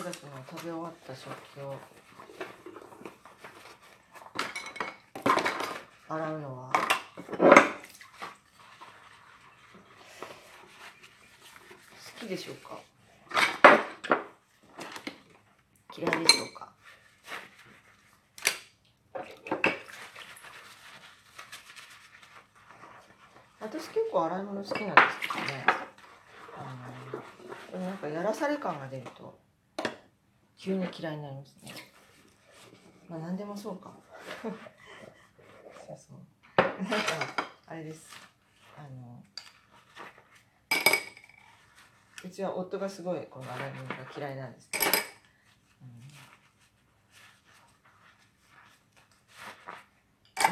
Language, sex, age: Japanese, female, 40-59